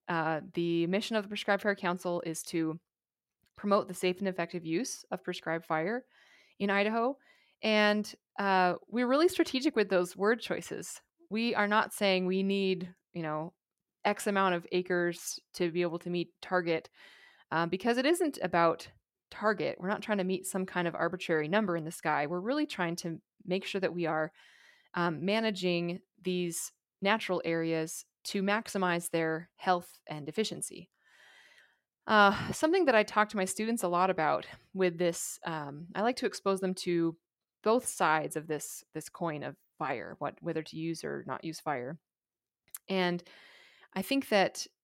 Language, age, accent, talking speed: English, 20-39, American, 170 wpm